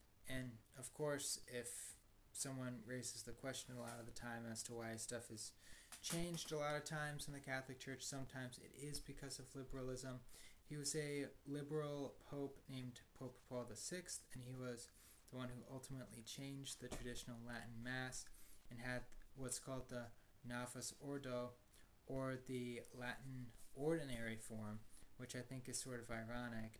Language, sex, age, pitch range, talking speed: English, male, 20-39, 115-135 Hz, 165 wpm